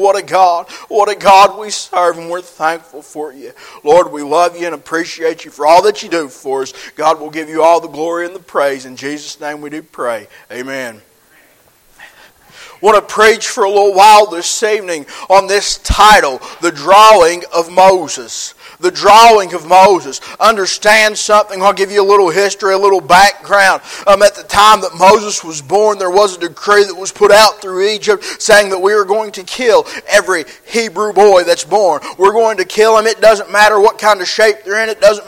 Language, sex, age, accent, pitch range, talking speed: English, male, 40-59, American, 185-215 Hz, 210 wpm